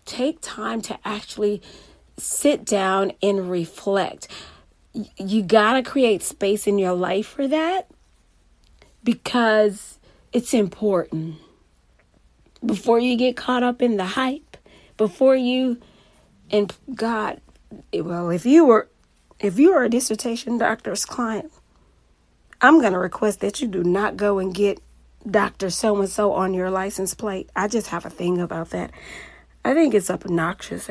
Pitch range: 180-230 Hz